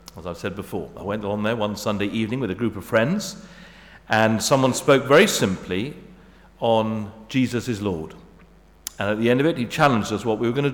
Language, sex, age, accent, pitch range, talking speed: English, male, 50-69, British, 105-135 Hz, 210 wpm